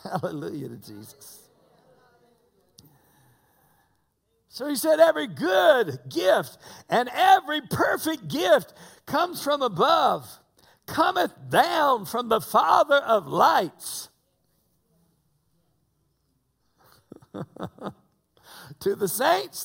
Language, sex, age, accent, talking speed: English, male, 60-79, American, 80 wpm